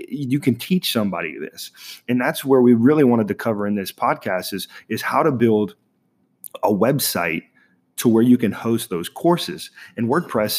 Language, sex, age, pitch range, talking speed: English, male, 30-49, 100-125 Hz, 180 wpm